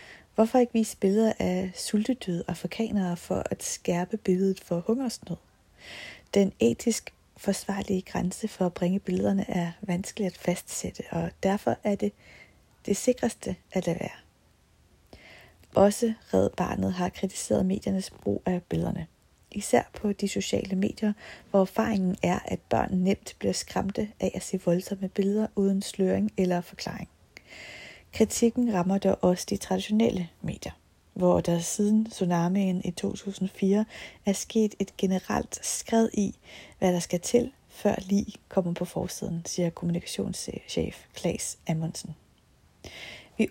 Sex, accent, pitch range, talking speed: female, native, 180-210 Hz, 135 wpm